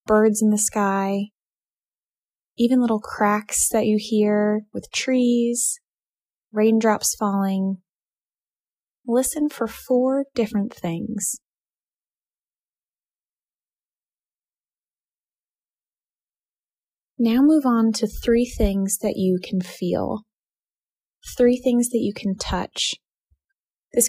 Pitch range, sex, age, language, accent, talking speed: 195-235 Hz, female, 20-39, English, American, 90 wpm